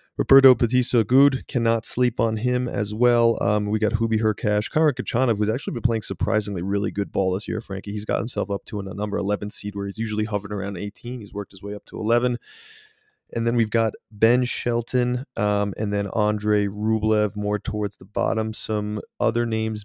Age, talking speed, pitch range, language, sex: 20-39, 205 wpm, 105-120 Hz, English, male